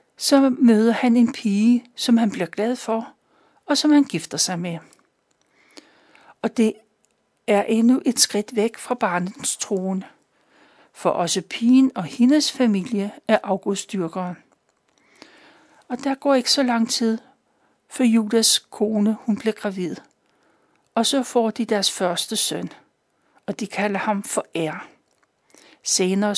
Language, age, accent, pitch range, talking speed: Danish, 60-79, native, 190-250 Hz, 140 wpm